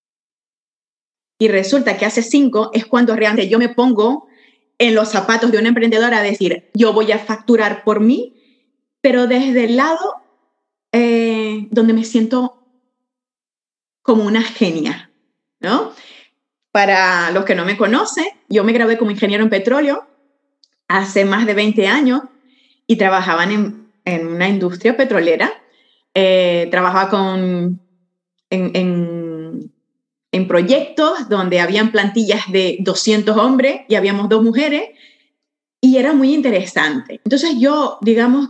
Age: 20-39